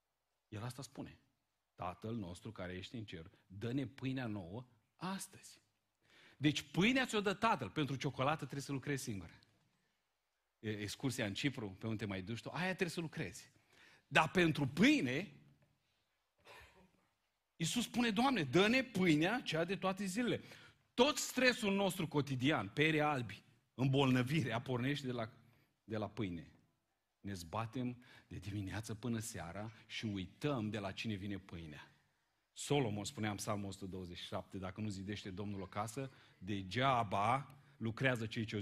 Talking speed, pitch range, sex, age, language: 140 wpm, 110-150 Hz, male, 40-59, Romanian